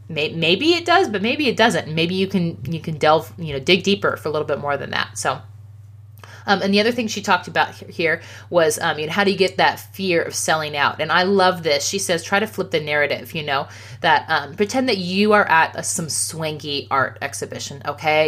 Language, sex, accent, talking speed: English, female, American, 235 wpm